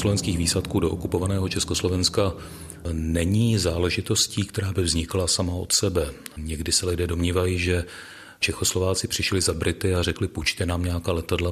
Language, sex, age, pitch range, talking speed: Czech, male, 40-59, 85-100 Hz, 145 wpm